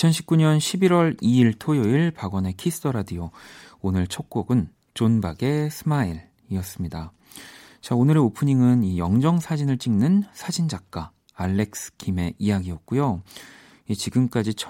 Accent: native